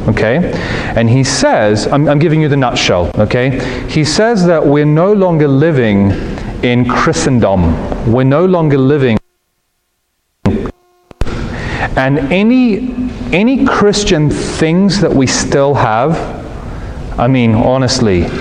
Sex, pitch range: male, 120-150 Hz